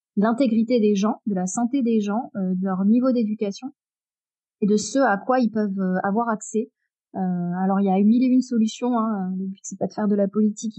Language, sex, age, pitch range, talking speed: French, female, 30-49, 205-245 Hz, 230 wpm